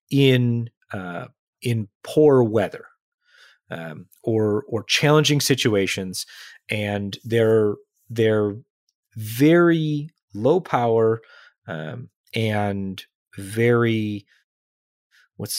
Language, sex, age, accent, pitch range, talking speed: English, male, 30-49, American, 100-140 Hz, 75 wpm